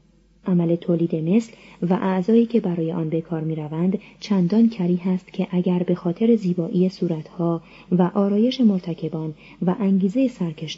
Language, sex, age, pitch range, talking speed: Persian, female, 30-49, 170-210 Hz, 140 wpm